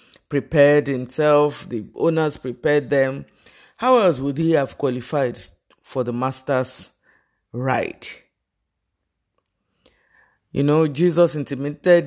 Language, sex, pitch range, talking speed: English, male, 120-150 Hz, 100 wpm